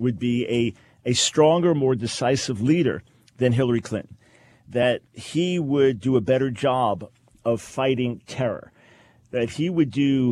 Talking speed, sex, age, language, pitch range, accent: 145 wpm, male, 50-69, English, 115-140 Hz, American